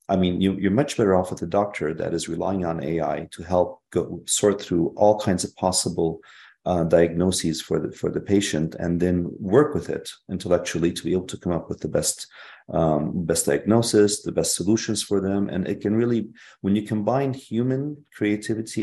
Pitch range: 85-105 Hz